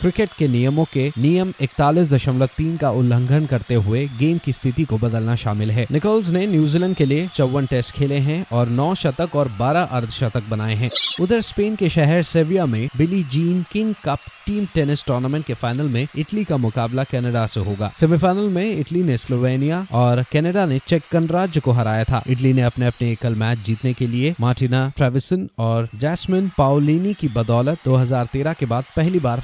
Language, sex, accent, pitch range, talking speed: Hindi, male, native, 120-165 Hz, 185 wpm